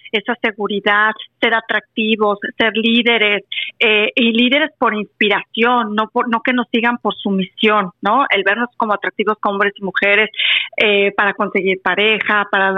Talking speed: 155 wpm